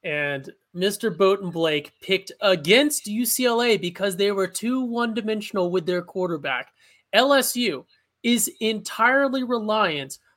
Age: 20-39